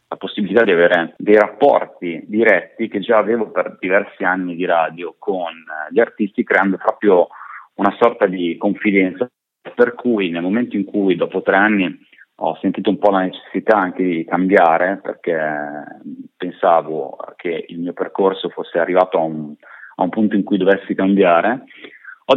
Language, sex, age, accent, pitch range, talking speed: Italian, male, 30-49, native, 90-115 Hz, 160 wpm